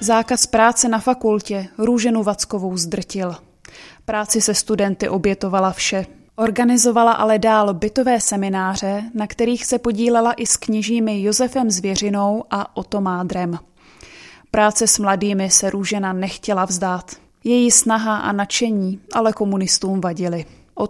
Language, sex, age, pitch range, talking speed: Czech, female, 20-39, 190-225 Hz, 125 wpm